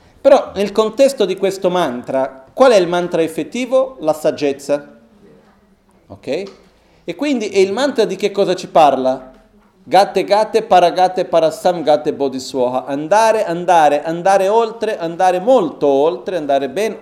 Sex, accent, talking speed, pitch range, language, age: male, native, 140 wpm, 145-215 Hz, Italian, 40-59